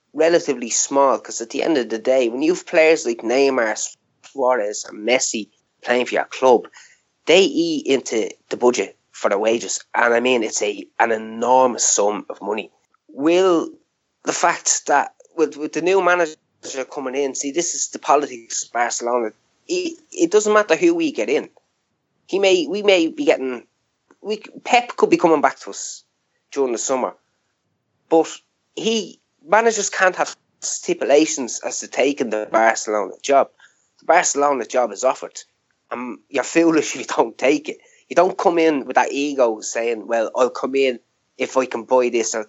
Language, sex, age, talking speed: English, male, 20-39, 180 wpm